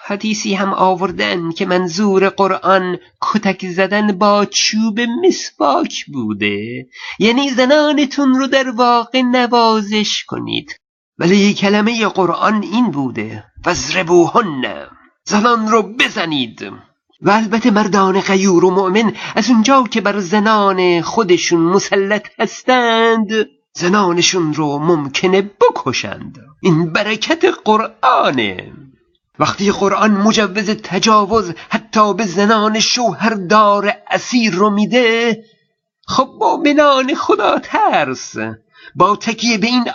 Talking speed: 105 wpm